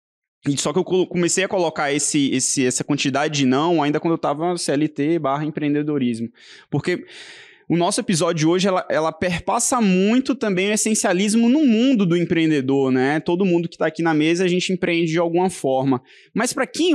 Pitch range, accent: 155-220 Hz, Brazilian